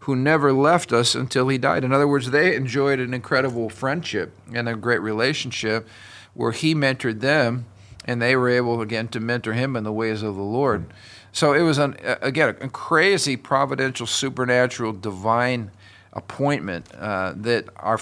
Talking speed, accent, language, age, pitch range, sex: 165 wpm, American, English, 50-69, 105-125 Hz, male